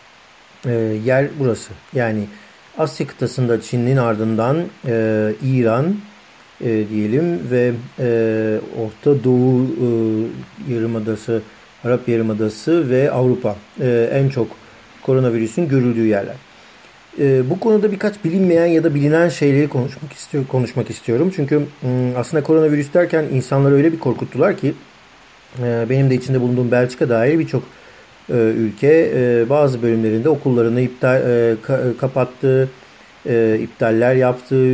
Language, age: Turkish, 50-69